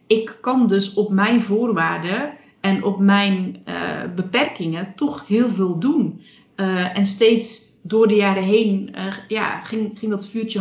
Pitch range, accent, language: 185-215 Hz, Dutch, Dutch